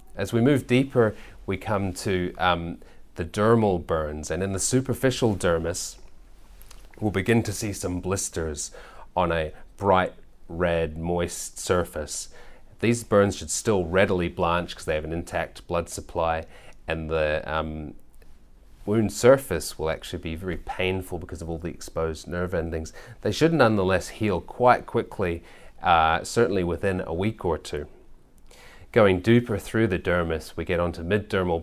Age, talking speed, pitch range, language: 30-49, 150 wpm, 80-100 Hz, English